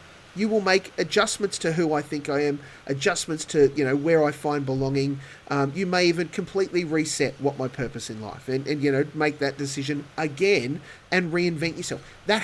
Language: English